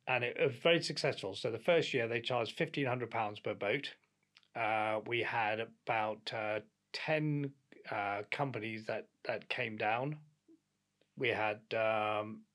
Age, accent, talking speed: 30-49, British, 145 wpm